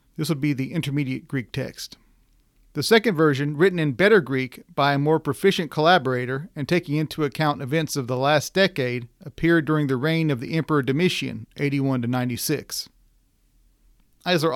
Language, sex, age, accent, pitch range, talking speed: English, male, 40-59, American, 135-170 Hz, 155 wpm